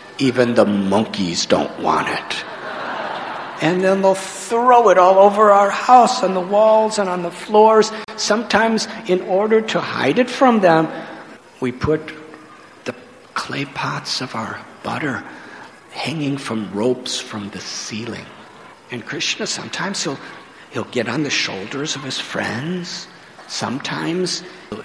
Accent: American